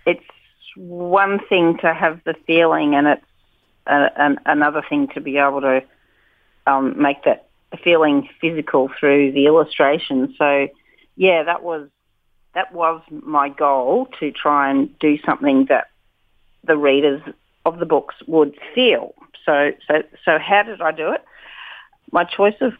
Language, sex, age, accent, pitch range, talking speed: English, female, 40-59, Australian, 140-165 Hz, 150 wpm